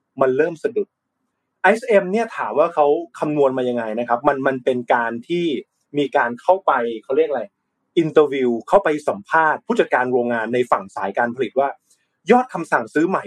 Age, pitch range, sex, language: 20-39, 125-180 Hz, male, Thai